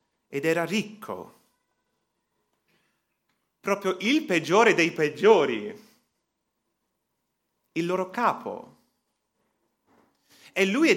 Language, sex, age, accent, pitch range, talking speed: Italian, male, 30-49, native, 160-225 Hz, 75 wpm